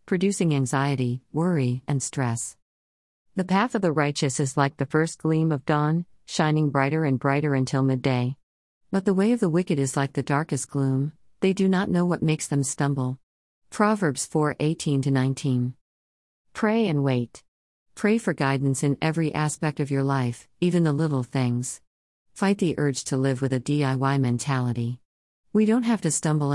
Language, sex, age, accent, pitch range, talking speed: English, female, 50-69, American, 130-160 Hz, 175 wpm